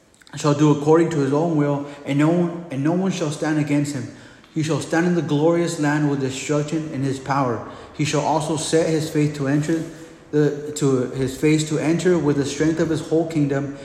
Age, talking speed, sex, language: 30-49, 215 wpm, male, English